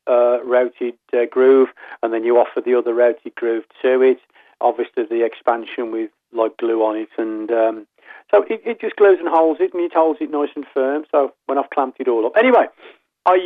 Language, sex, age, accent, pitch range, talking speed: English, male, 40-59, British, 115-170 Hz, 215 wpm